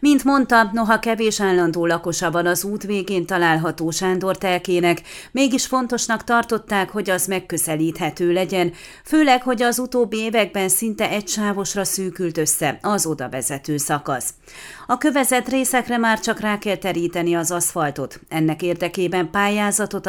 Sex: female